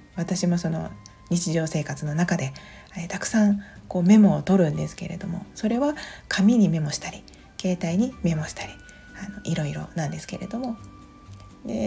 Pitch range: 155-205 Hz